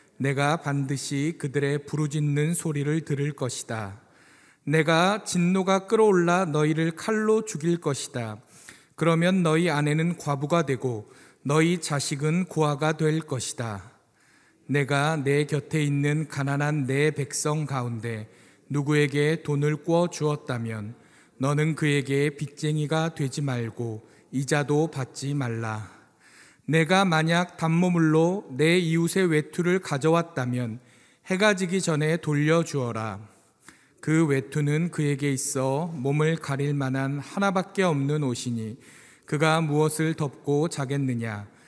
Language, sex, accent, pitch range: Korean, male, native, 135-160 Hz